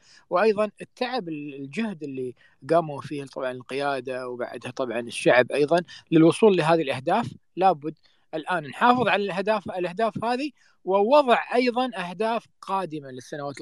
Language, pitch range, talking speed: Arabic, 135-185 Hz, 120 wpm